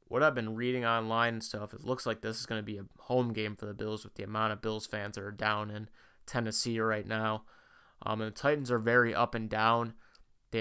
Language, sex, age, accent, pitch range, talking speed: English, male, 20-39, American, 110-115 Hz, 245 wpm